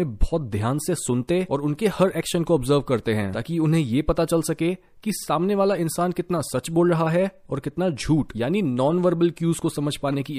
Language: Hindi